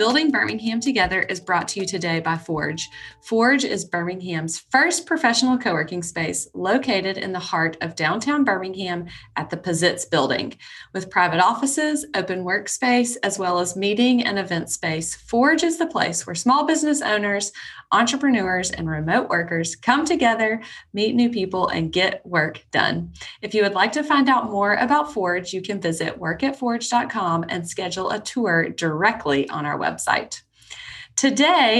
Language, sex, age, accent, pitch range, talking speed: English, female, 30-49, American, 170-240 Hz, 160 wpm